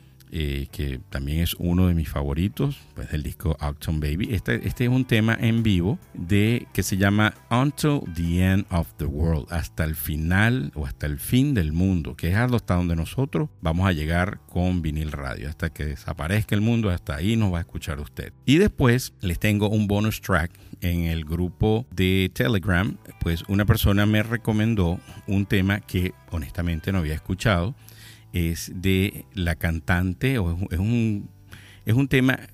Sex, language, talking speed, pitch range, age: male, Spanish, 175 wpm, 85-110 Hz, 50-69